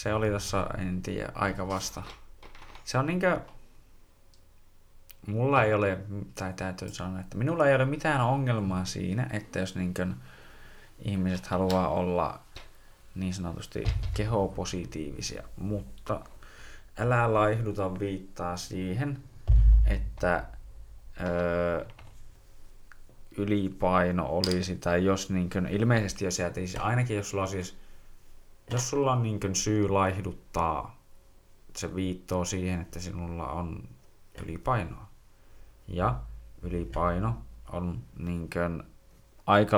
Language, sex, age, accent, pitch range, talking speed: Finnish, male, 20-39, native, 90-105 Hz, 105 wpm